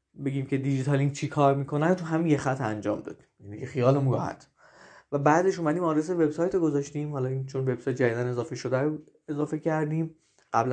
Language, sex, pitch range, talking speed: Persian, male, 130-155 Hz, 170 wpm